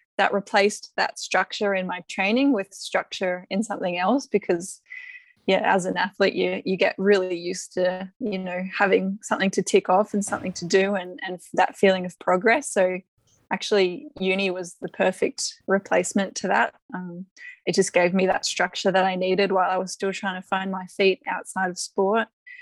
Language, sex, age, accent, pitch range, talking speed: English, female, 10-29, Australian, 185-220 Hz, 190 wpm